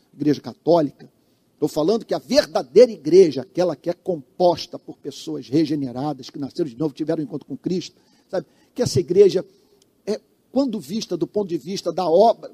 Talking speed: 175 wpm